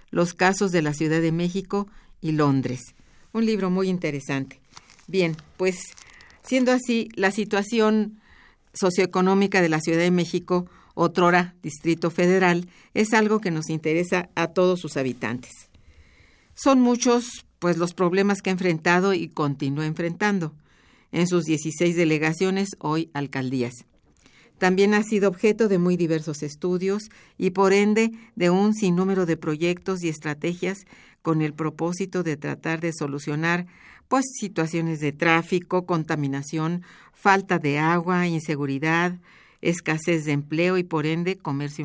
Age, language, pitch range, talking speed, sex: 50-69, Spanish, 155-190 Hz, 135 wpm, female